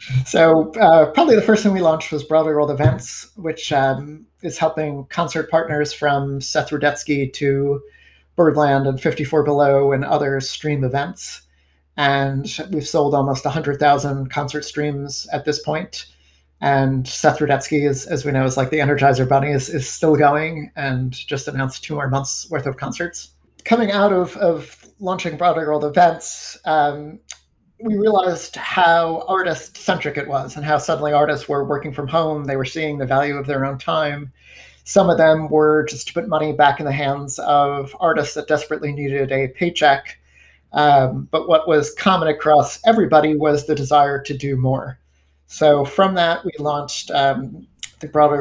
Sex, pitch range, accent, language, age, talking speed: male, 140-160 Hz, American, English, 30-49, 170 wpm